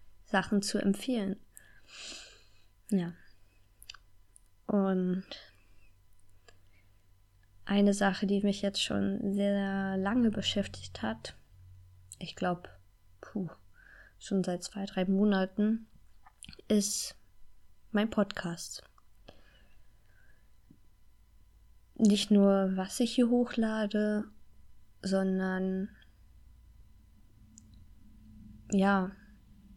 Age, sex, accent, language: 20-39, female, German, German